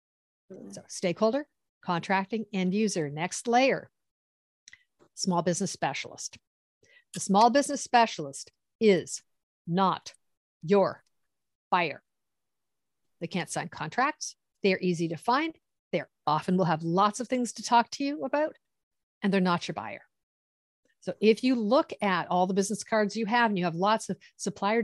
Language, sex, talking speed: English, female, 145 wpm